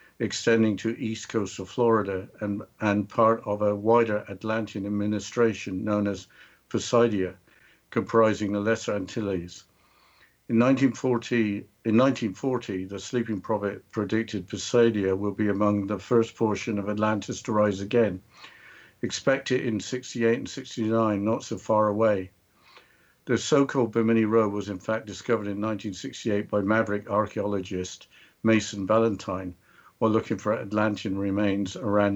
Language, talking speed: English, 130 wpm